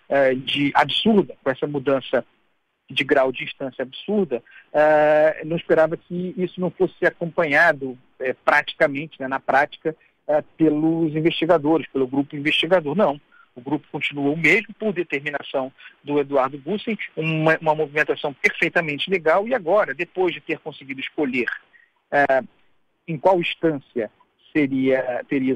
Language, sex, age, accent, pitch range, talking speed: Portuguese, male, 50-69, Brazilian, 145-190 Hz, 125 wpm